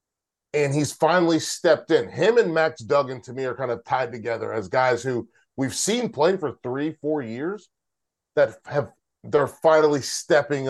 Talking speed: 175 wpm